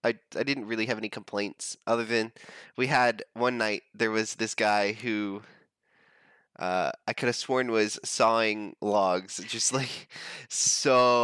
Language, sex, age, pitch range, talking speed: English, male, 20-39, 105-125 Hz, 155 wpm